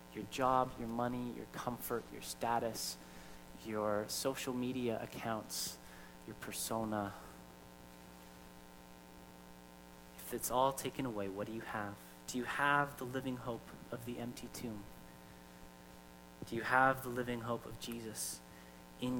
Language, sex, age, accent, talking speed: English, male, 30-49, American, 130 wpm